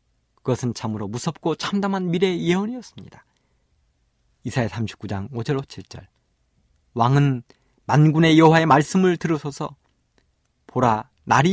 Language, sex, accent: Korean, male, native